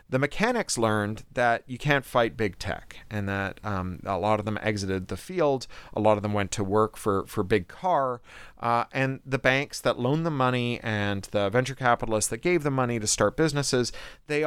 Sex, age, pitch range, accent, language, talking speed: male, 30-49, 105-130 Hz, American, English, 205 wpm